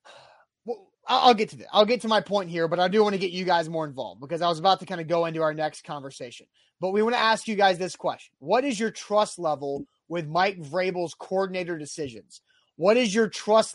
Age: 30-49